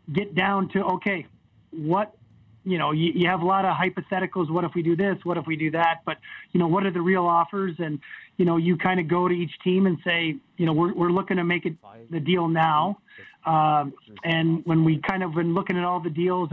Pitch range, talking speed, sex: 160-185 Hz, 245 wpm, male